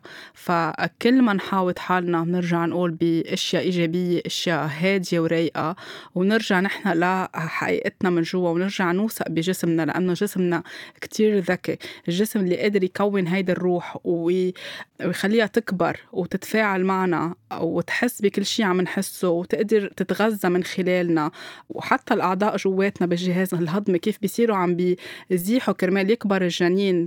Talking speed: 120 wpm